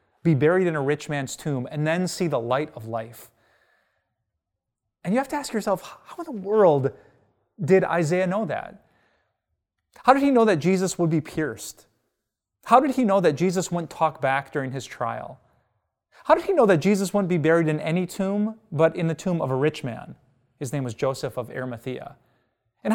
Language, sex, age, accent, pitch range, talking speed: English, male, 30-49, American, 125-180 Hz, 200 wpm